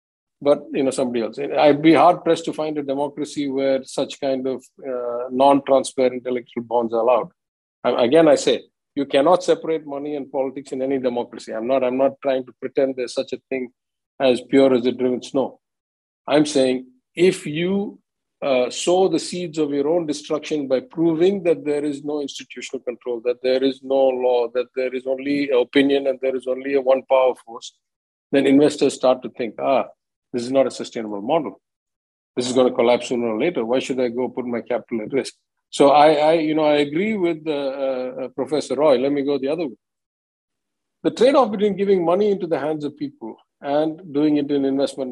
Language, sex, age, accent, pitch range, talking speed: English, male, 50-69, Indian, 130-155 Hz, 200 wpm